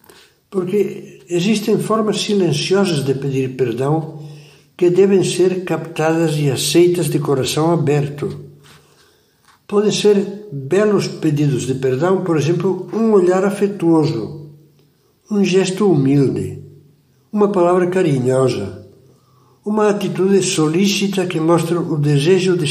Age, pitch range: 60-79, 140-175 Hz